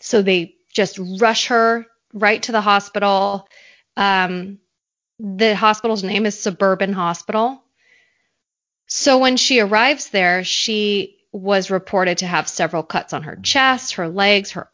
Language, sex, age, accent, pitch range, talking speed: English, female, 20-39, American, 185-225 Hz, 140 wpm